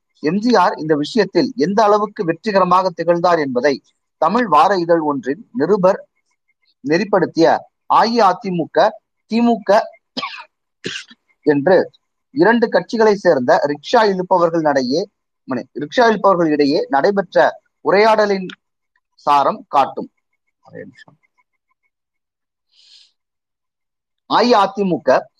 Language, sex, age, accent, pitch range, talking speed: Tamil, male, 30-49, native, 165-255 Hz, 75 wpm